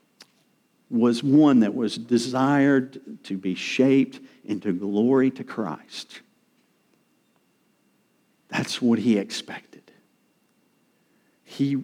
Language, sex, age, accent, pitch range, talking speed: English, male, 50-69, American, 115-165 Hz, 85 wpm